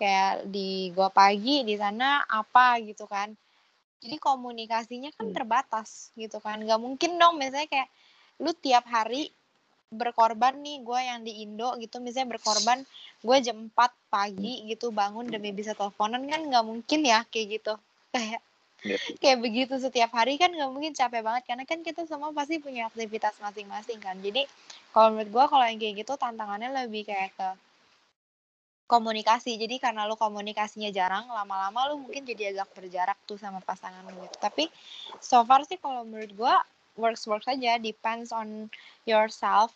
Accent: native